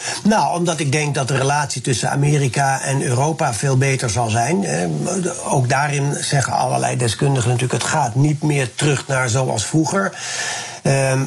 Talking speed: 160 wpm